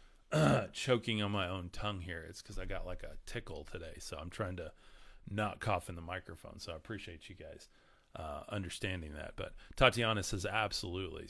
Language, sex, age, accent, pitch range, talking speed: English, male, 30-49, American, 90-120 Hz, 190 wpm